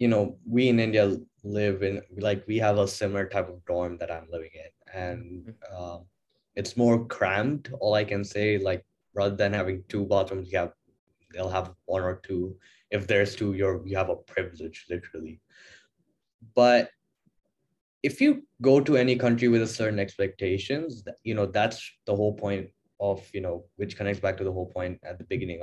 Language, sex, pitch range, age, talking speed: English, male, 95-125 Hz, 10-29, 185 wpm